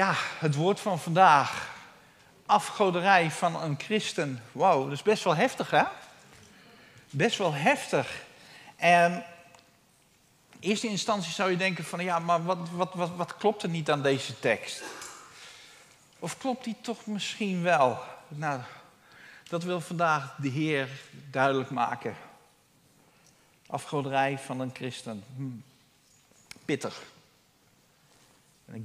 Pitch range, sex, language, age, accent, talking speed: 135-185 Hz, male, Dutch, 50-69, Dutch, 120 wpm